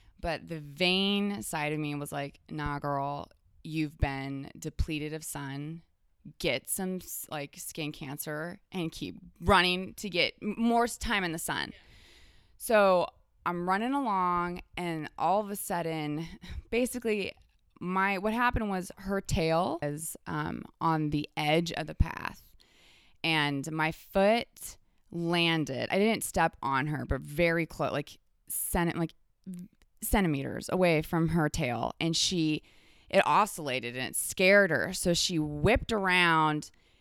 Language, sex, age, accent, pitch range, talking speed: English, female, 20-39, American, 150-190 Hz, 140 wpm